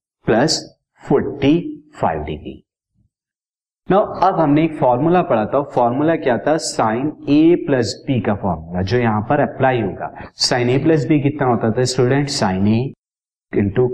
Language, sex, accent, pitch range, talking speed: Hindi, male, native, 115-150 Hz, 150 wpm